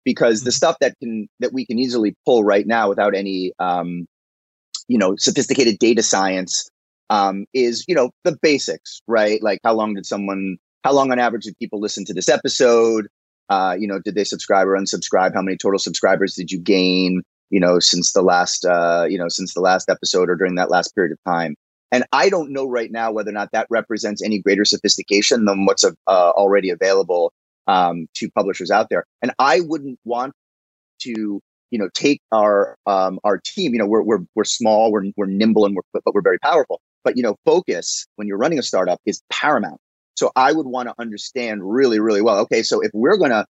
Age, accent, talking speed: 30-49, American, 210 wpm